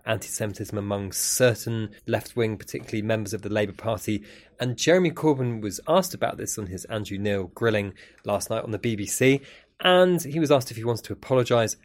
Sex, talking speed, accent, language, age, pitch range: male, 180 wpm, British, English, 20-39, 105-130 Hz